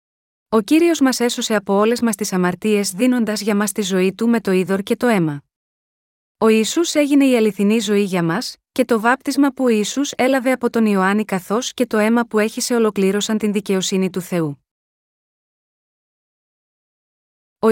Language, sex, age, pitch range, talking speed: Greek, female, 30-49, 200-245 Hz, 175 wpm